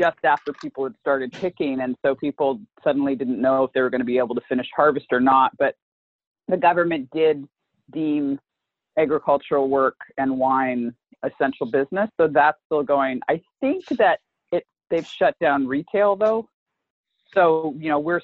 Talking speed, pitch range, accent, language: 170 wpm, 125-155 Hz, American, English